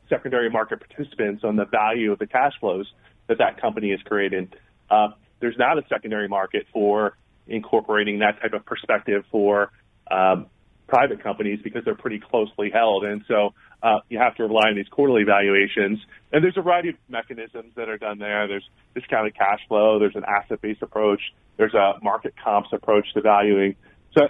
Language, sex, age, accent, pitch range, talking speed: English, male, 30-49, American, 105-120 Hz, 180 wpm